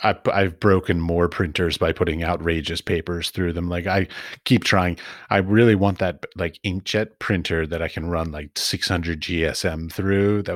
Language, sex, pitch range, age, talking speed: English, male, 85-100 Hz, 30-49, 170 wpm